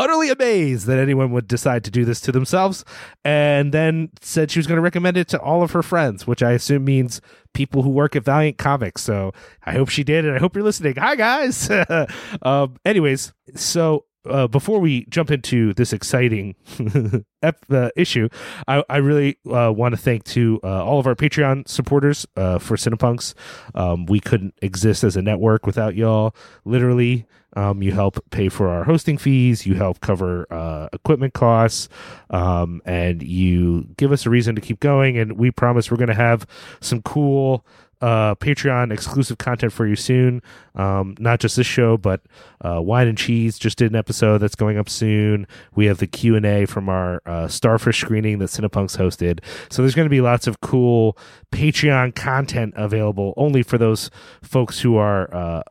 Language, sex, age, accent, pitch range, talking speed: English, male, 30-49, American, 105-140 Hz, 190 wpm